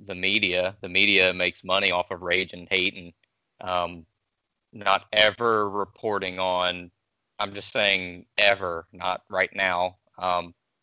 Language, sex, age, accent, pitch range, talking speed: English, male, 30-49, American, 90-105 Hz, 140 wpm